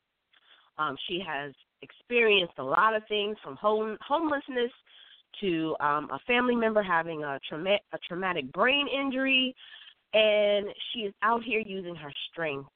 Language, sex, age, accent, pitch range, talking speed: English, female, 30-49, American, 155-220 Hz, 135 wpm